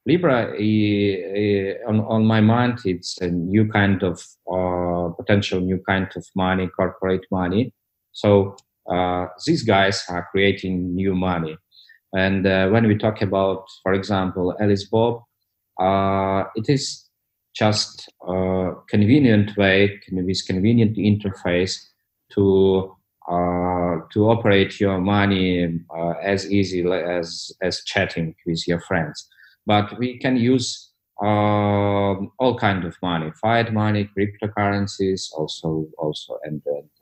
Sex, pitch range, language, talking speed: male, 90-105 Hz, English, 125 wpm